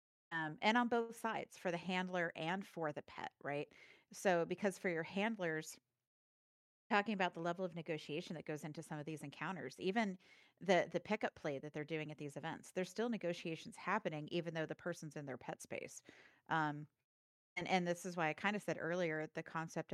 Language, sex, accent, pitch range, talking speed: English, female, American, 155-185 Hz, 200 wpm